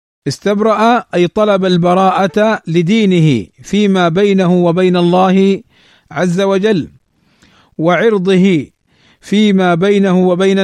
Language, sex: Arabic, male